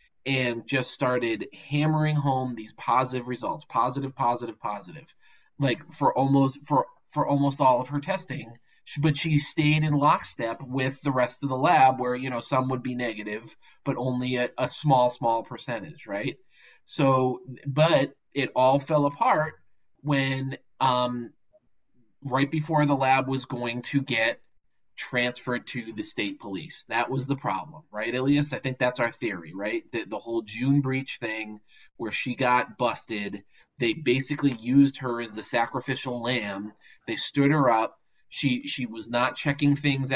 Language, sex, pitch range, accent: English, male, 120-140 Hz, American